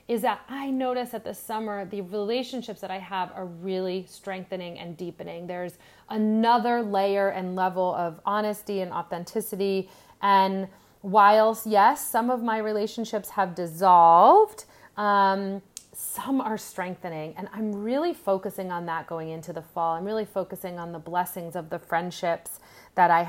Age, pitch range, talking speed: 30-49, 170-205 Hz, 155 wpm